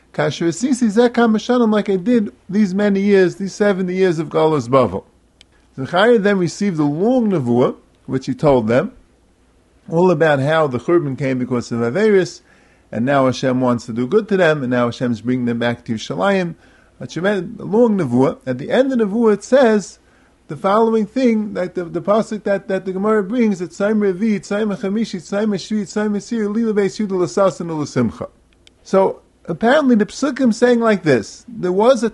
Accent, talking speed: American, 150 wpm